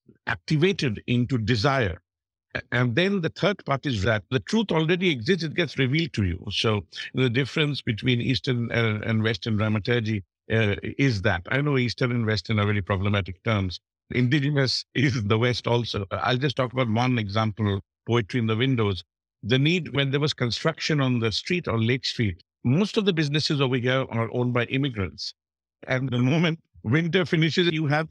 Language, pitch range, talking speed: English, 115-145 Hz, 180 wpm